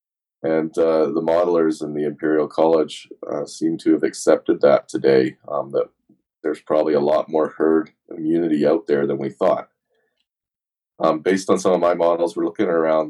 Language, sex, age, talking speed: English, male, 30-49, 180 wpm